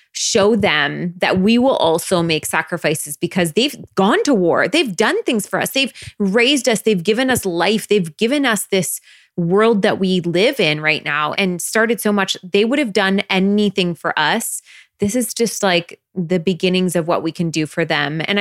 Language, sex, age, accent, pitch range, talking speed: English, female, 20-39, American, 165-205 Hz, 200 wpm